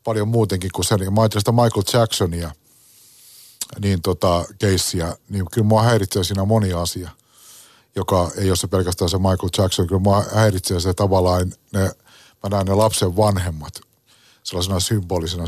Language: Finnish